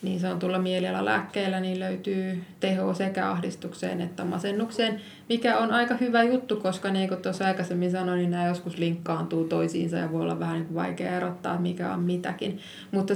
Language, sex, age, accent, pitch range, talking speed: Finnish, female, 20-39, native, 165-190 Hz, 190 wpm